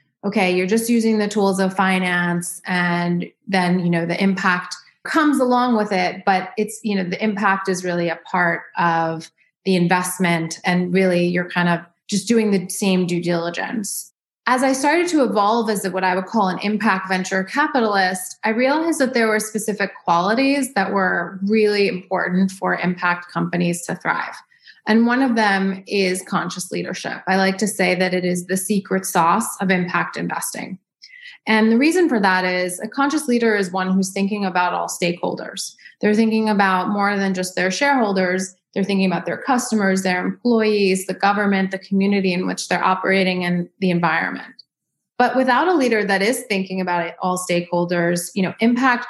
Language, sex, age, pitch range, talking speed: English, female, 20-39, 180-220 Hz, 180 wpm